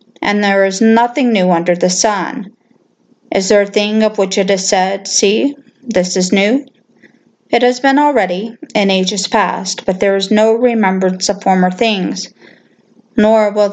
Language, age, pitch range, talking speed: English, 40-59, 195-230 Hz, 165 wpm